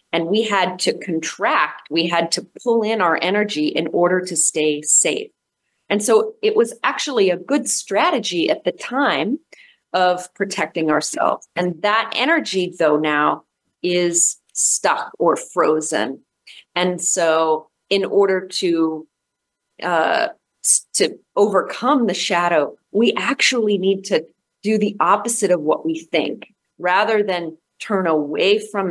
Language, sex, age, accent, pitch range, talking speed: English, female, 30-49, American, 160-205 Hz, 135 wpm